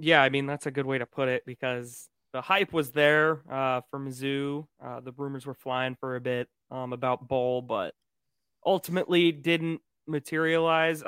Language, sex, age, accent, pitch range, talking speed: English, male, 20-39, American, 125-145 Hz, 180 wpm